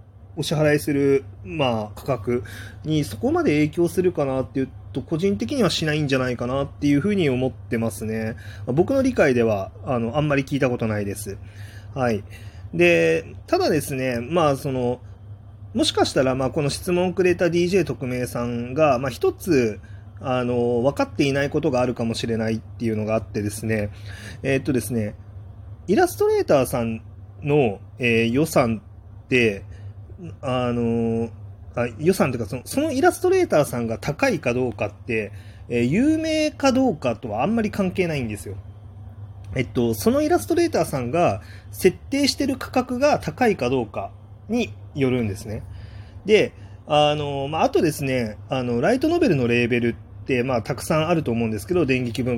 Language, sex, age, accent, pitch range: Japanese, male, 30-49, native, 105-150 Hz